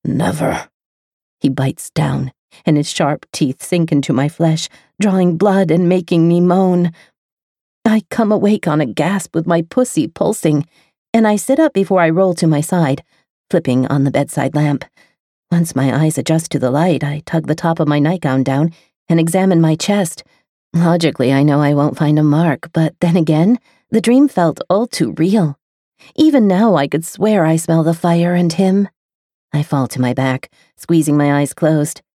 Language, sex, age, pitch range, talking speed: English, female, 40-59, 145-180 Hz, 185 wpm